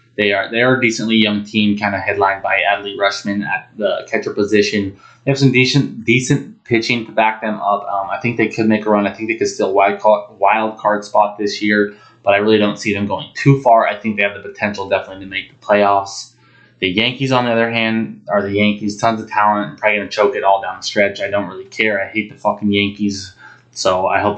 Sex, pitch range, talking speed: male, 100-115 Hz, 245 wpm